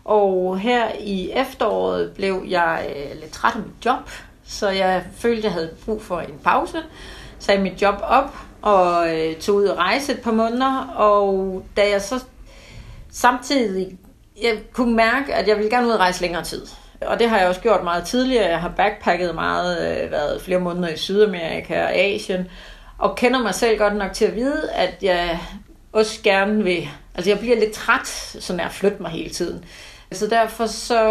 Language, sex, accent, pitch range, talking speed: Danish, female, native, 175-220 Hz, 190 wpm